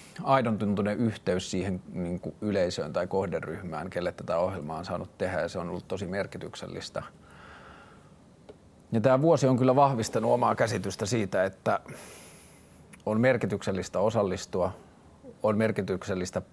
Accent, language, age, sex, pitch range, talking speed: native, Finnish, 30-49, male, 95-115 Hz, 125 wpm